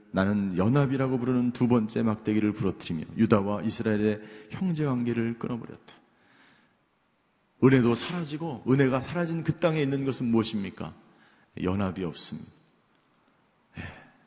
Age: 40-59